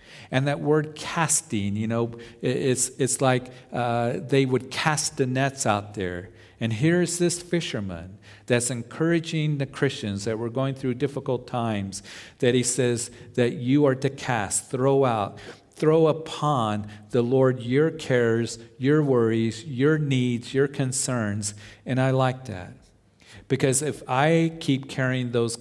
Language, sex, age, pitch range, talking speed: English, male, 50-69, 105-135 Hz, 150 wpm